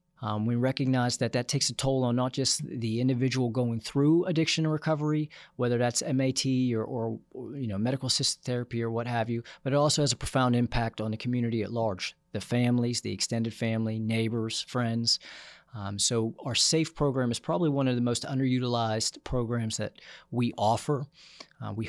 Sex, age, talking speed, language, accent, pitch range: male, 40-59, 185 wpm, English, American, 115-140 Hz